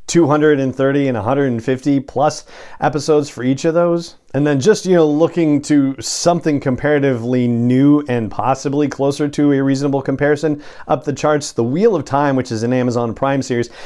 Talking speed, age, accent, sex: 170 wpm, 40-59, American, male